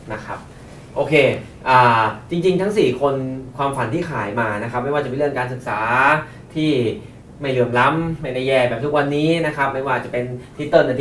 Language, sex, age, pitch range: Thai, male, 20-39, 120-150 Hz